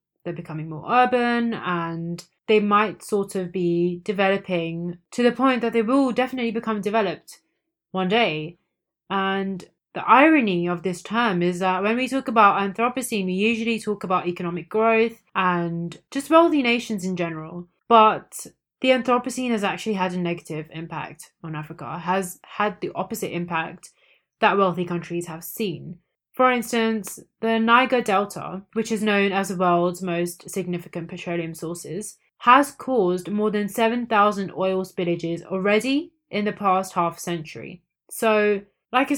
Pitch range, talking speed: 175-225 Hz, 150 wpm